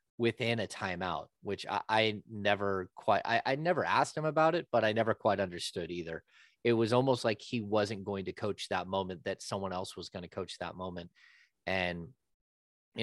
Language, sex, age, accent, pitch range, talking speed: English, male, 30-49, American, 90-115 Hz, 200 wpm